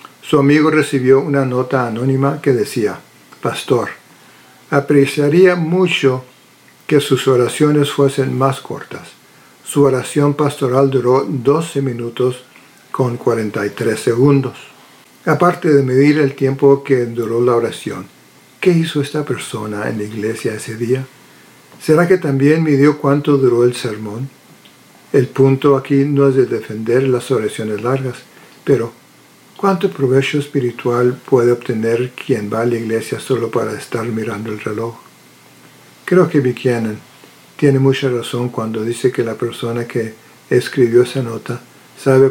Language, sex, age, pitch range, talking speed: Spanish, male, 50-69, 120-140 Hz, 135 wpm